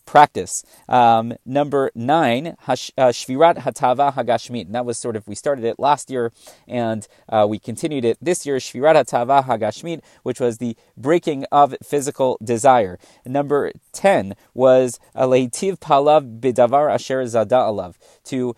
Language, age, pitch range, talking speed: English, 30-49, 120-150 Hz, 135 wpm